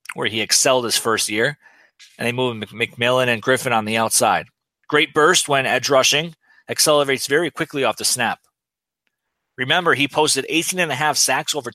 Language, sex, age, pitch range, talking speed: English, male, 30-49, 120-150 Hz, 180 wpm